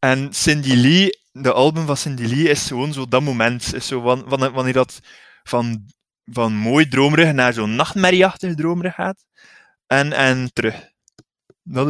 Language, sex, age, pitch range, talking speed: Dutch, male, 20-39, 120-145 Hz, 145 wpm